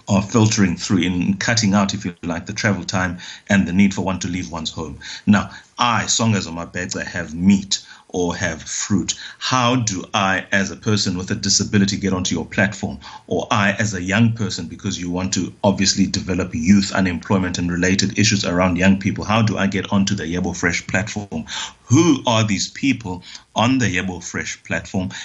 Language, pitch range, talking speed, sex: English, 95-115 Hz, 195 wpm, male